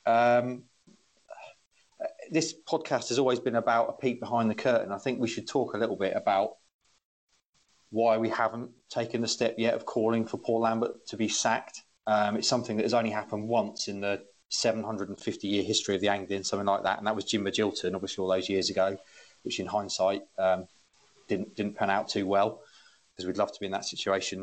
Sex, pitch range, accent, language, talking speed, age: male, 100-120 Hz, British, English, 205 wpm, 30-49